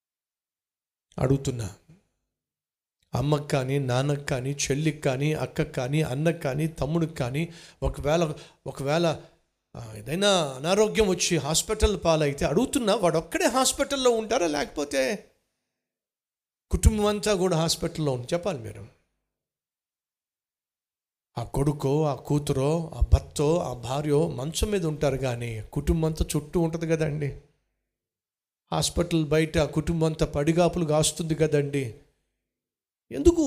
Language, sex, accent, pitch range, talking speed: Telugu, male, native, 145-215 Hz, 100 wpm